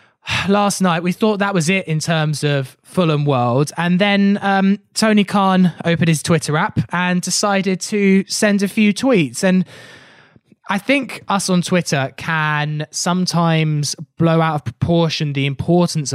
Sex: male